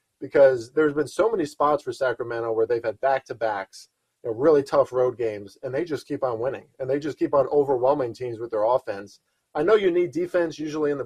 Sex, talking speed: male, 215 wpm